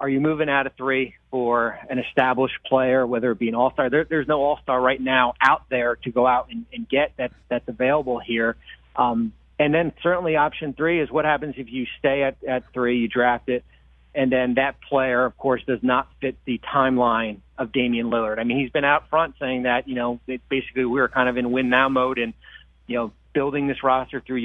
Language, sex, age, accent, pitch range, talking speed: English, male, 40-59, American, 120-150 Hz, 225 wpm